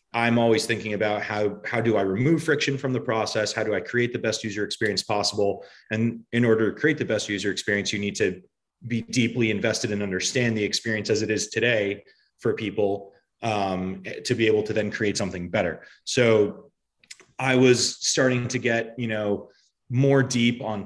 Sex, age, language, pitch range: male, 30-49, English, 100-120 Hz